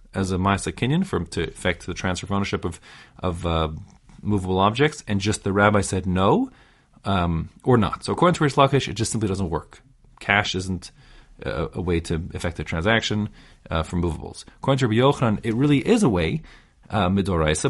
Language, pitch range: English, 90-120 Hz